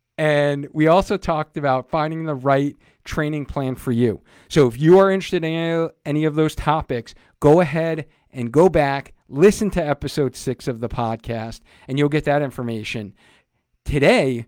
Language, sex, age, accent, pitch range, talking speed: English, male, 40-59, American, 120-155 Hz, 165 wpm